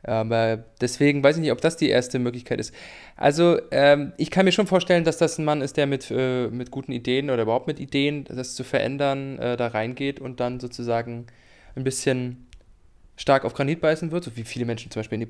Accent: German